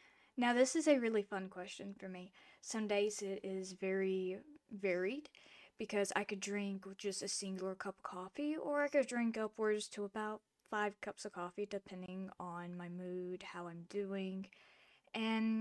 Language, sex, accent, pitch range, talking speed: English, female, American, 185-225 Hz, 170 wpm